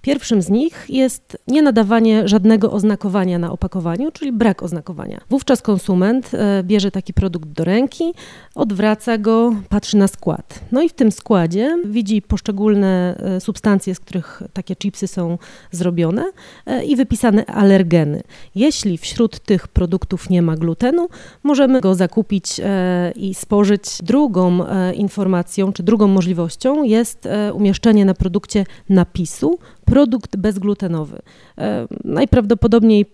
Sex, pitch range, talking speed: female, 185-225 Hz, 120 wpm